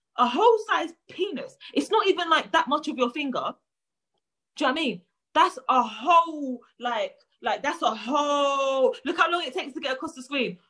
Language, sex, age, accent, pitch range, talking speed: English, female, 20-39, British, 250-345 Hz, 210 wpm